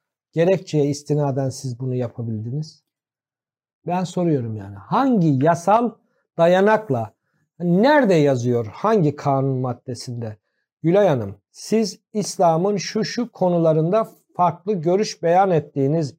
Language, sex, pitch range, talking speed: Turkish, male, 145-195 Hz, 100 wpm